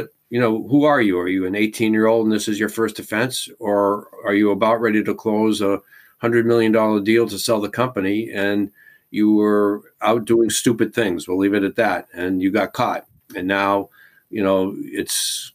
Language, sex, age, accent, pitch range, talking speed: English, male, 50-69, American, 105-120 Hz, 210 wpm